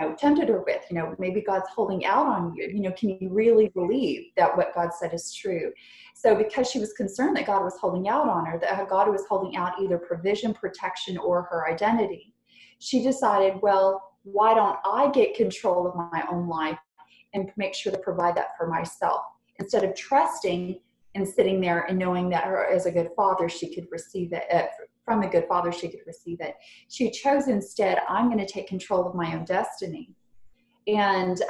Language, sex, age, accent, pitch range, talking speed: English, female, 30-49, American, 175-210 Hz, 195 wpm